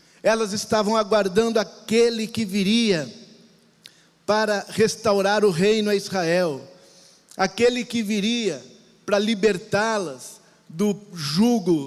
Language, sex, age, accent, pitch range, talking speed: Portuguese, male, 50-69, Brazilian, 180-220 Hz, 95 wpm